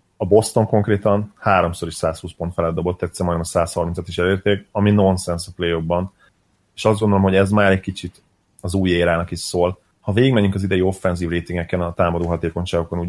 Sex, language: male, Hungarian